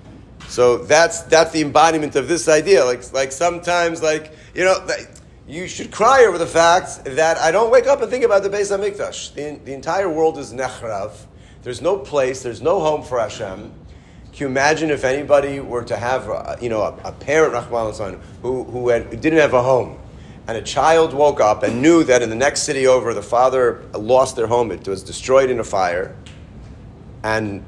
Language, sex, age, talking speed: English, male, 40-59, 205 wpm